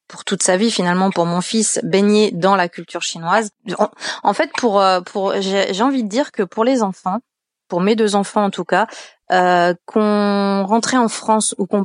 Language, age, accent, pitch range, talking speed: French, 20-39, French, 175-210 Hz, 205 wpm